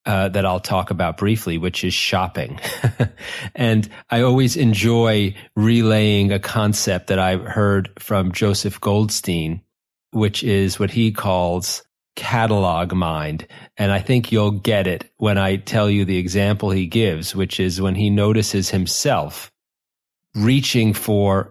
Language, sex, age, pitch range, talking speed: English, male, 30-49, 95-110 Hz, 140 wpm